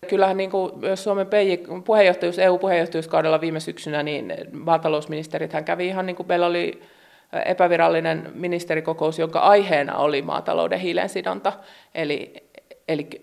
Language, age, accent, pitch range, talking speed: Finnish, 30-49, native, 155-185 Hz, 110 wpm